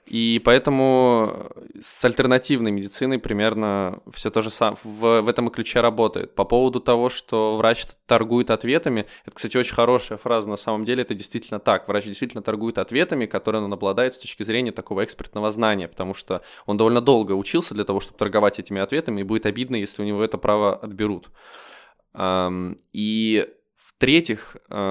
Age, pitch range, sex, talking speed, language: 20-39, 105-120 Hz, male, 170 wpm, Russian